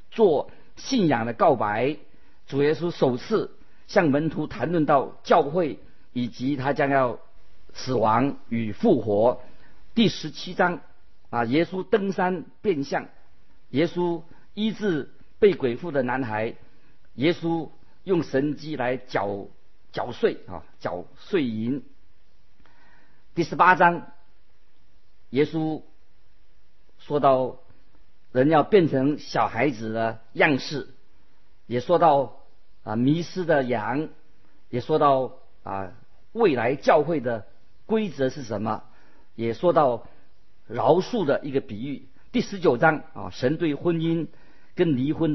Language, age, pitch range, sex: Chinese, 50-69, 125-170 Hz, male